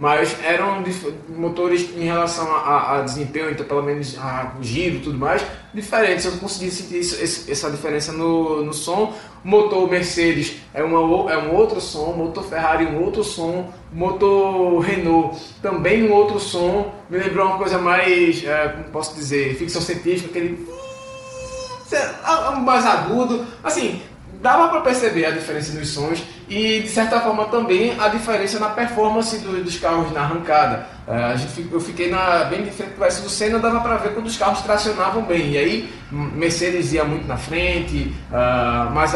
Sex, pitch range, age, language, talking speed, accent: male, 155-205 Hz, 20-39, Portuguese, 170 wpm, Brazilian